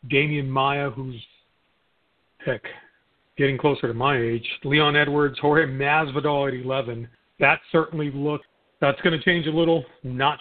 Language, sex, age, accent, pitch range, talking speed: English, male, 40-59, American, 135-160 Hz, 145 wpm